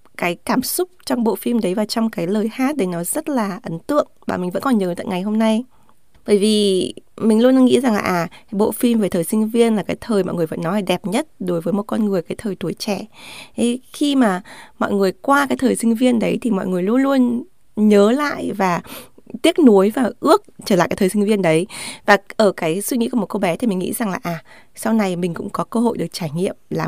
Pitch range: 185-240 Hz